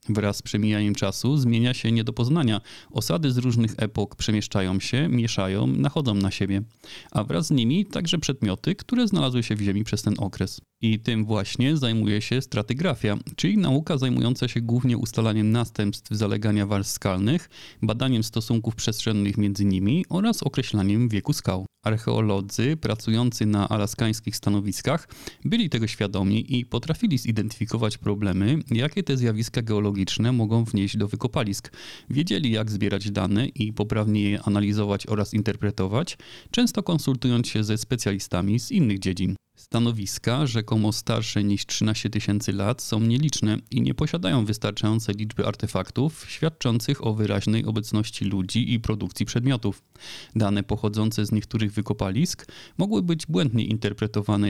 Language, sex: Polish, male